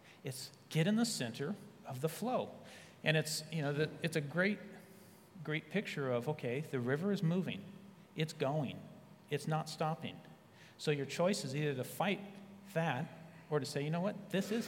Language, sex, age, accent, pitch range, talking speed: English, male, 40-59, American, 145-180 Hz, 180 wpm